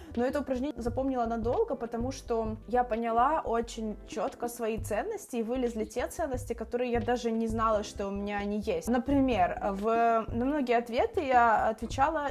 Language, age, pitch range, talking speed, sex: Ukrainian, 20-39, 215-250 Hz, 165 wpm, female